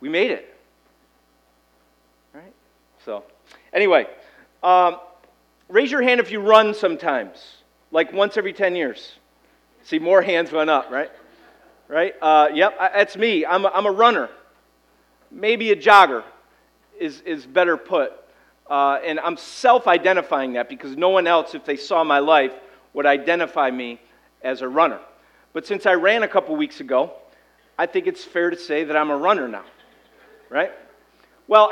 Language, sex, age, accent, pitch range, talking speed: English, male, 40-59, American, 140-215 Hz, 155 wpm